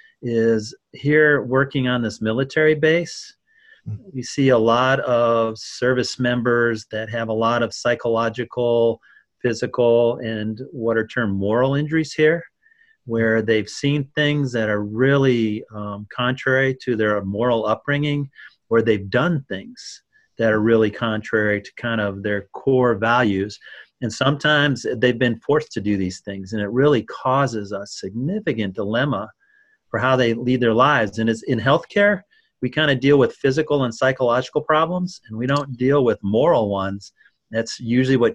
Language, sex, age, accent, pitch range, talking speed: English, male, 40-59, American, 115-145 Hz, 155 wpm